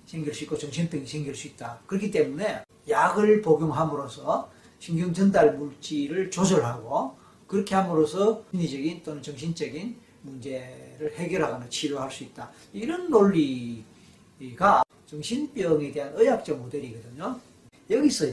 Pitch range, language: 130-185 Hz, Korean